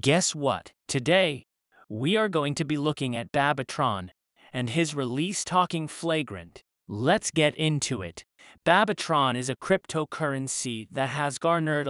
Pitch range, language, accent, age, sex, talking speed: 125-165 Hz, English, American, 40-59, male, 135 wpm